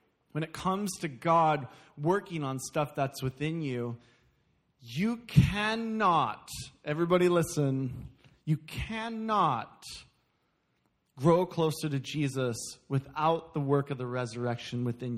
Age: 20-39